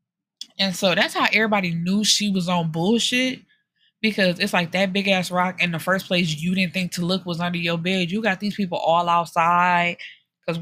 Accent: American